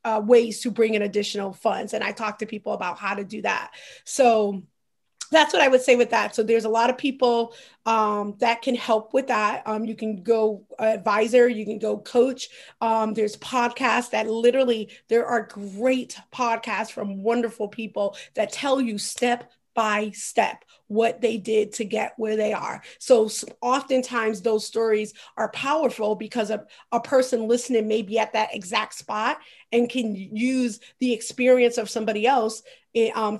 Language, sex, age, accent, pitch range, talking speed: English, female, 30-49, American, 215-240 Hz, 175 wpm